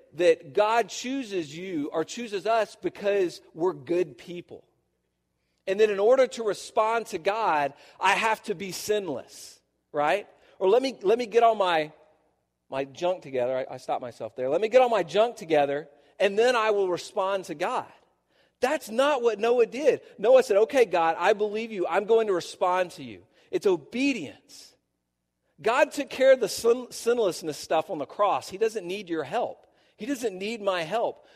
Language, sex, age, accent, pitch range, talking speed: English, male, 40-59, American, 165-245 Hz, 180 wpm